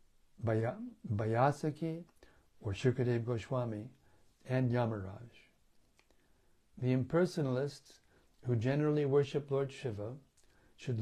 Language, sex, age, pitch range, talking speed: English, male, 60-79, 115-145 Hz, 75 wpm